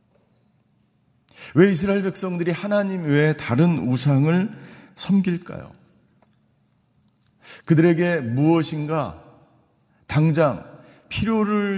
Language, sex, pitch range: Korean, male, 125-175 Hz